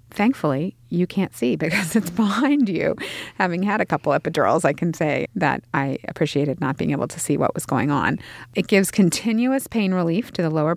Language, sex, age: English, female, 30-49